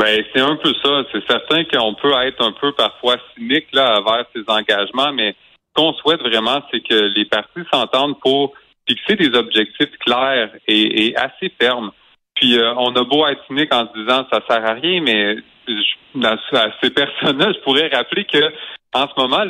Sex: male